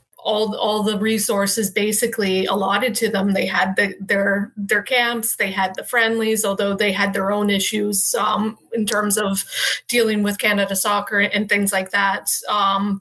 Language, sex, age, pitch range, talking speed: English, female, 30-49, 200-225 Hz, 165 wpm